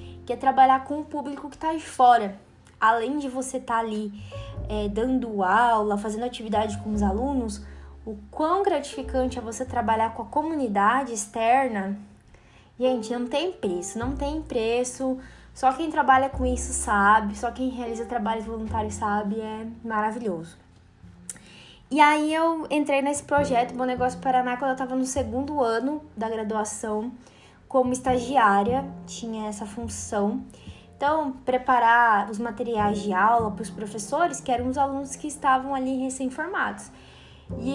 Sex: female